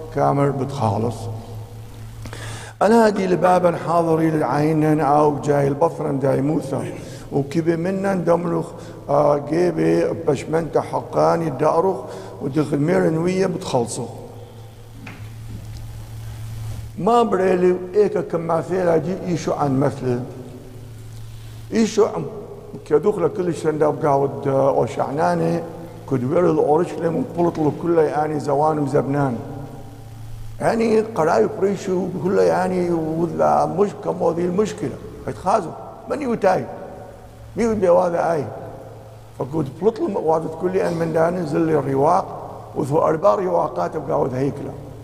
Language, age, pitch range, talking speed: English, 50-69, 125-175 Hz, 105 wpm